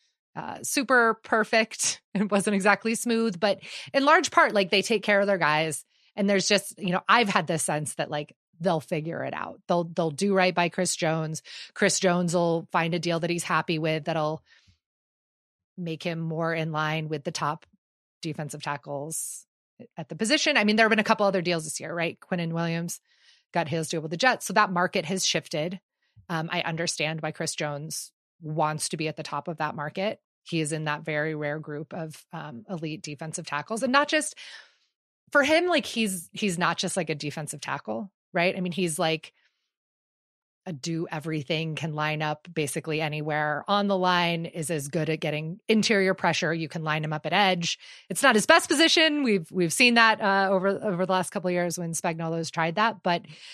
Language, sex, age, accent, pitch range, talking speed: English, female, 30-49, American, 155-200 Hz, 205 wpm